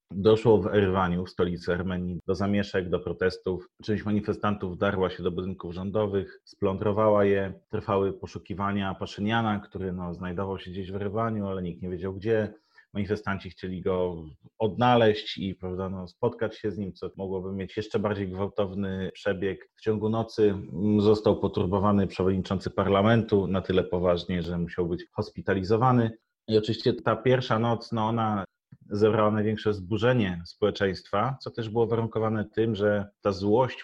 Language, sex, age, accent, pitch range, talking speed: Polish, male, 30-49, native, 95-110 Hz, 150 wpm